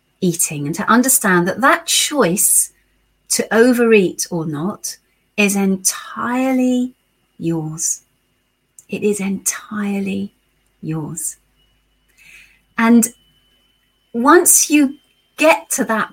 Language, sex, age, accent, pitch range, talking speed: English, female, 40-59, British, 165-240 Hz, 85 wpm